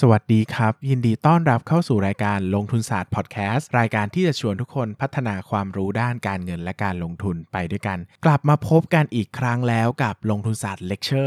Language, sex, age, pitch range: Thai, male, 20-39, 105-135 Hz